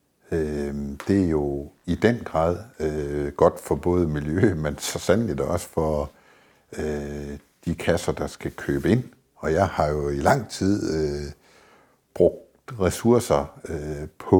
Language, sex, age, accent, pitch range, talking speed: Danish, male, 60-79, native, 75-95 Hz, 130 wpm